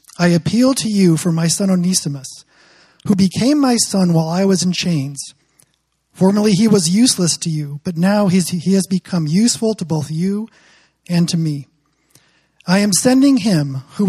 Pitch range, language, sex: 155-205 Hz, English, male